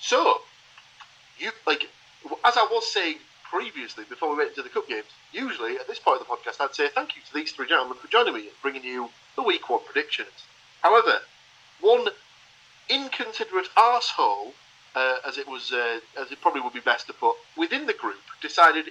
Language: English